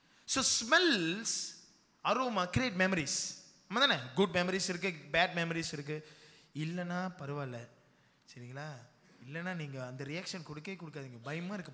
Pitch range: 150-215 Hz